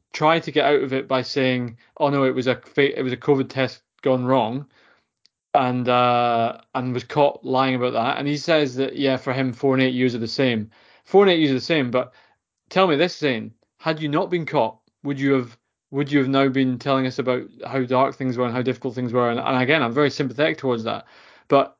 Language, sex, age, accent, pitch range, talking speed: English, male, 20-39, British, 125-150 Hz, 245 wpm